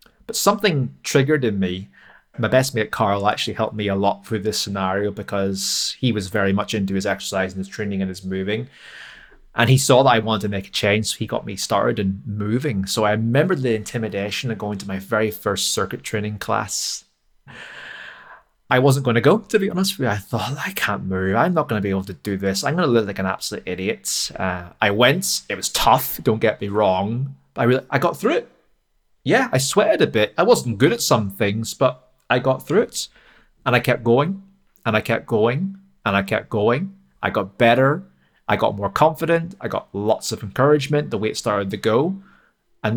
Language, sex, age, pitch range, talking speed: English, male, 20-39, 100-125 Hz, 220 wpm